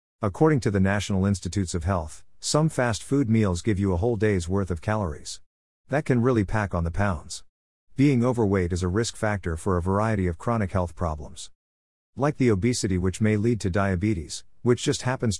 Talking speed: 195 wpm